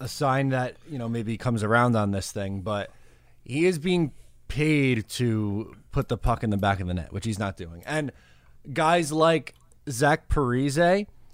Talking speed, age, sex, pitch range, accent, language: 185 wpm, 20-39, male, 115-155 Hz, American, English